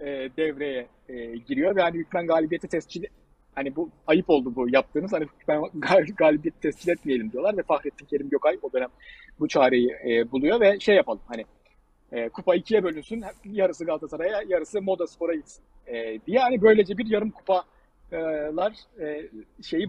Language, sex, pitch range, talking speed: Turkish, male, 140-195 Hz, 155 wpm